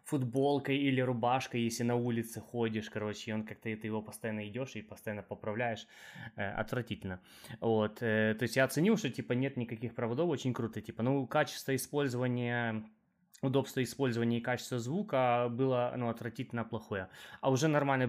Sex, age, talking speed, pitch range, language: male, 20-39, 155 wpm, 110-135 Hz, Ukrainian